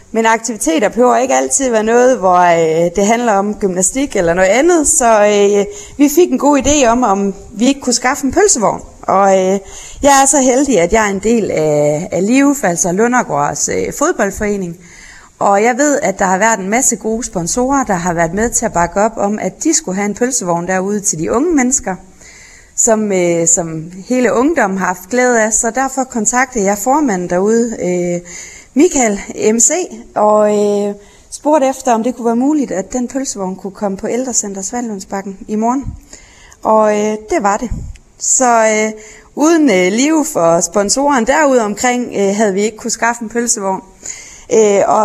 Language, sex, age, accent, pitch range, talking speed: Danish, female, 30-49, native, 195-250 Hz, 180 wpm